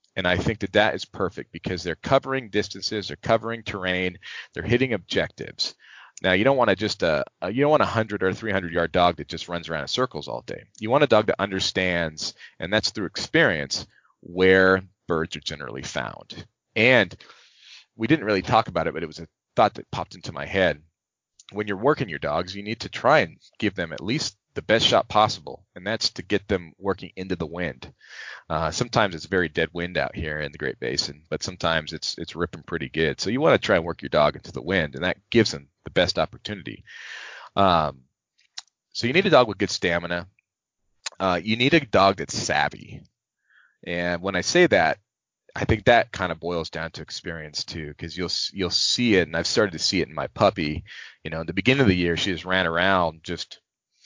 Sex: male